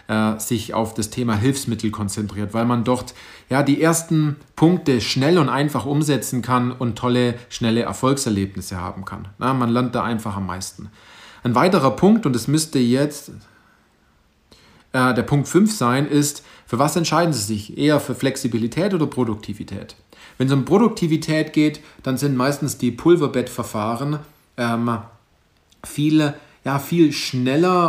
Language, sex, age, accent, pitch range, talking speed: German, male, 40-59, German, 115-145 Hz, 145 wpm